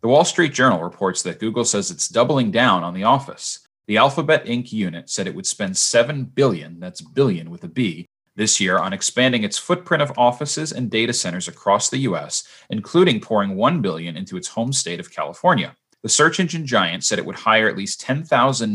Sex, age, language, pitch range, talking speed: male, 30-49, English, 105-145 Hz, 205 wpm